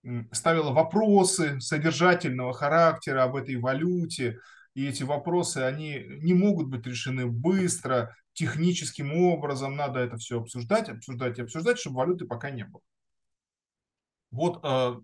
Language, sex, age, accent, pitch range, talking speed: Russian, male, 20-39, native, 125-175 Hz, 125 wpm